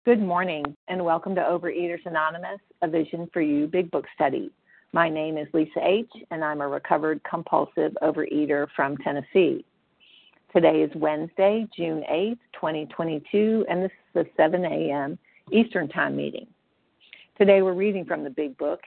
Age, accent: 50-69, American